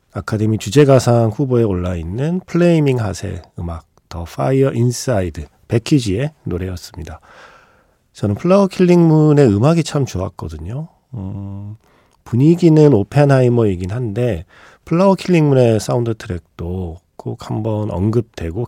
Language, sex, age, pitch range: Korean, male, 40-59, 95-135 Hz